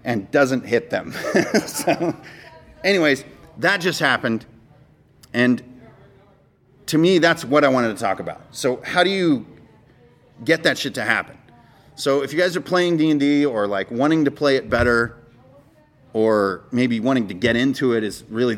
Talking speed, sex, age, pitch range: 165 wpm, male, 30-49, 115-140 Hz